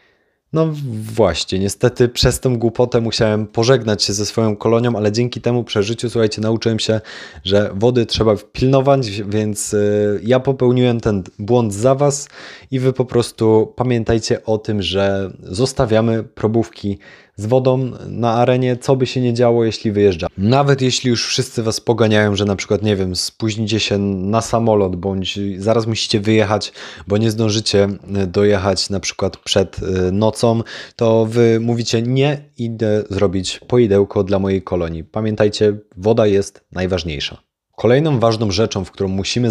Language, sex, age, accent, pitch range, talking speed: Polish, male, 20-39, native, 100-120 Hz, 150 wpm